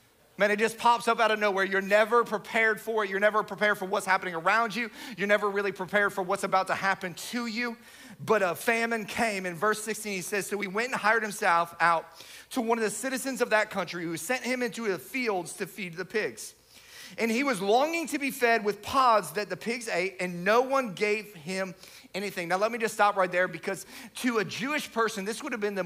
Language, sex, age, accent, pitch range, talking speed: English, male, 30-49, American, 190-235 Hz, 235 wpm